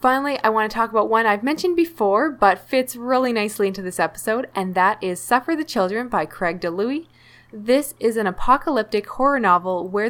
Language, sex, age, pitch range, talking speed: English, female, 10-29, 185-245 Hz, 195 wpm